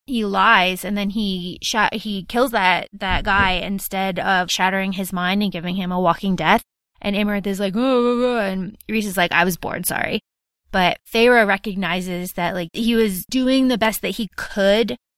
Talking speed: 185 wpm